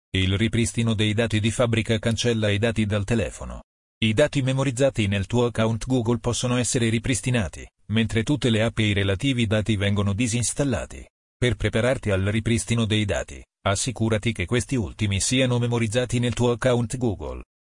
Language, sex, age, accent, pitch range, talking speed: Italian, male, 40-59, native, 105-120 Hz, 160 wpm